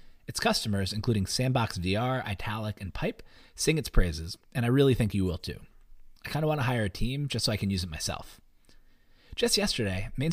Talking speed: 200 wpm